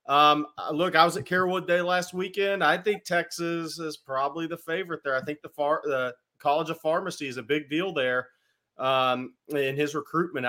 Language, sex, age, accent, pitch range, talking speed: English, male, 30-49, American, 130-160 Hz, 195 wpm